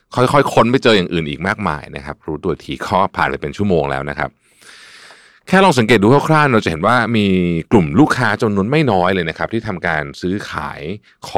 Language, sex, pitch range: Thai, male, 85-125 Hz